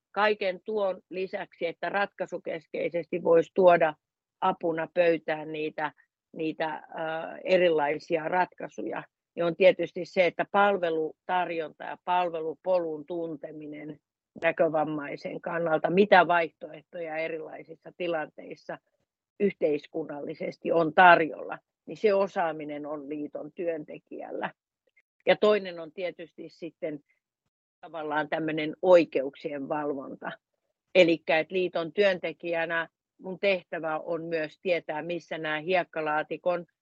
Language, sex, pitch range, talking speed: Finnish, female, 155-180 Hz, 95 wpm